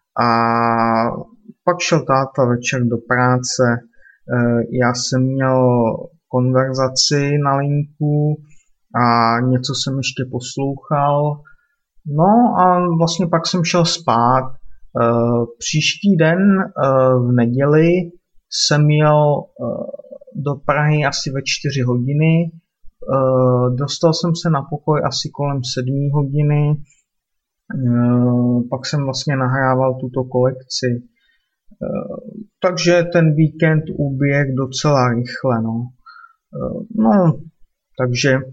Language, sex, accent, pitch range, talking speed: Czech, male, native, 130-160 Hz, 95 wpm